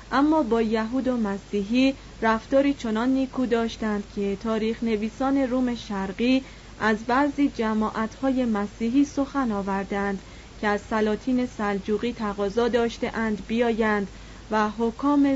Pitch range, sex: 215-265 Hz, female